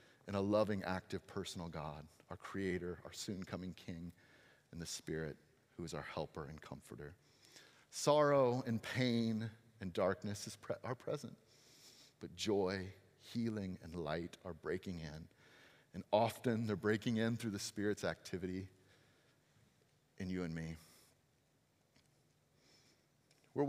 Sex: male